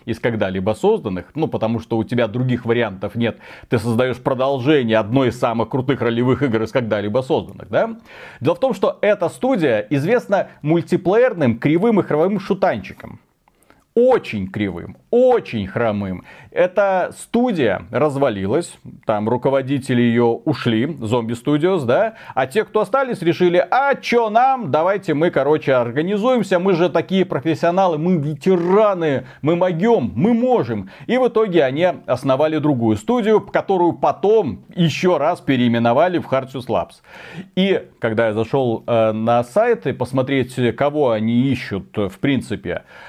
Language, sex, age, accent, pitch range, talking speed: Russian, male, 30-49, native, 120-185 Hz, 140 wpm